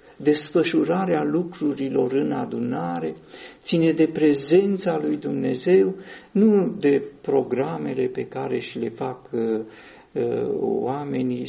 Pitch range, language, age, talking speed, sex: 130-155 Hz, Romanian, 50-69, 95 wpm, male